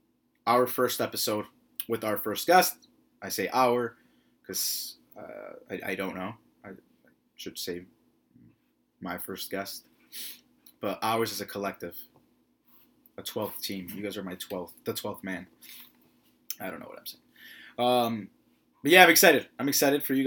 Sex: male